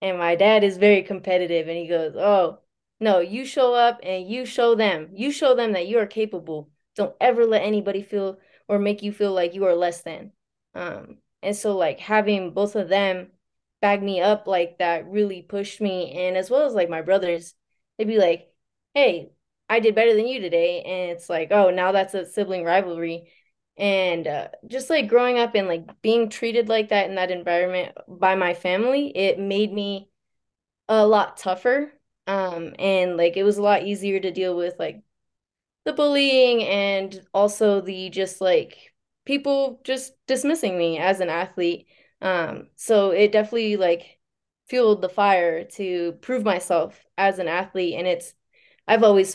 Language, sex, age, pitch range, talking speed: English, female, 20-39, 180-215 Hz, 180 wpm